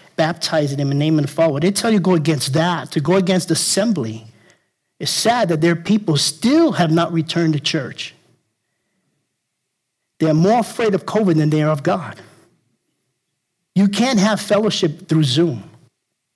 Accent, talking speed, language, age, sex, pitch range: American, 160 wpm, English, 50-69, male, 155-200 Hz